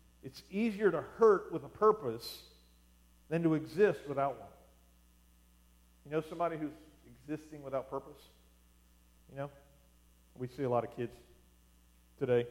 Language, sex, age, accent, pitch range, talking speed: English, male, 40-59, American, 105-170 Hz, 135 wpm